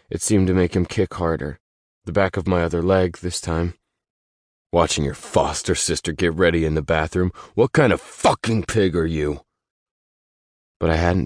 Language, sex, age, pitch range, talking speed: English, male, 20-39, 80-100 Hz, 180 wpm